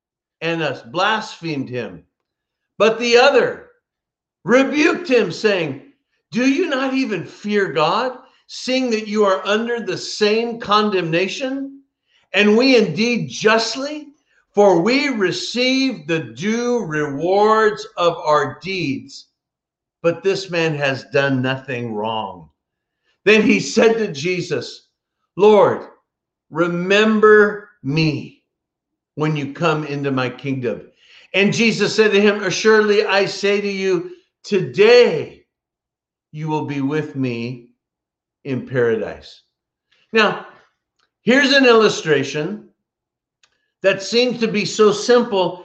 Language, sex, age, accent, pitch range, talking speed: English, male, 50-69, American, 170-250 Hz, 115 wpm